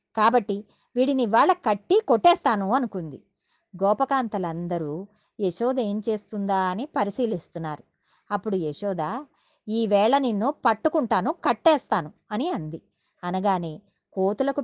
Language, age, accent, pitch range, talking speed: Telugu, 20-39, native, 190-265 Hz, 90 wpm